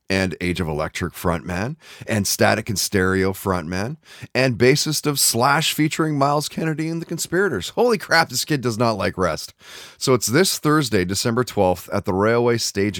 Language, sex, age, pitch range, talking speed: English, male, 30-49, 95-140 Hz, 175 wpm